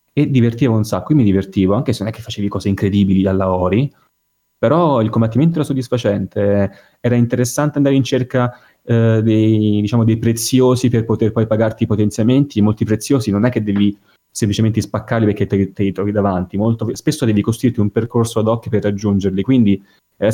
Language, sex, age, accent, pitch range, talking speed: Italian, male, 20-39, native, 100-125 Hz, 190 wpm